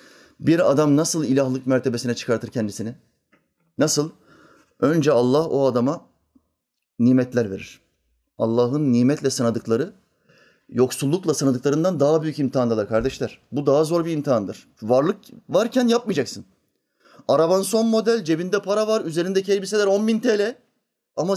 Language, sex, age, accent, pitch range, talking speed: Turkish, male, 30-49, native, 140-205 Hz, 120 wpm